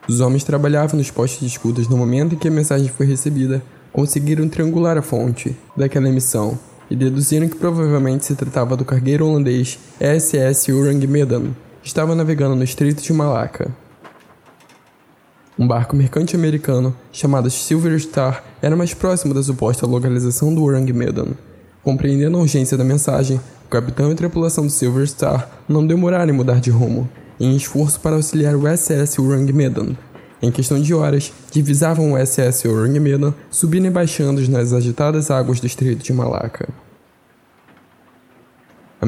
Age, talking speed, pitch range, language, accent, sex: 10-29, 160 wpm, 130-155 Hz, Portuguese, Brazilian, male